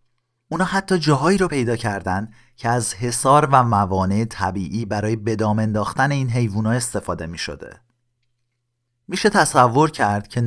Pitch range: 105-125 Hz